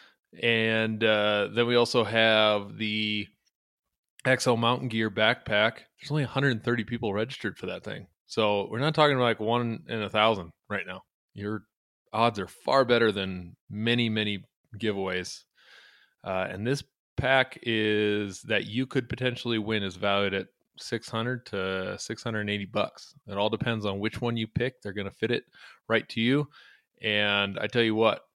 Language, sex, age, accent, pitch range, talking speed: English, male, 20-39, American, 105-120 Hz, 165 wpm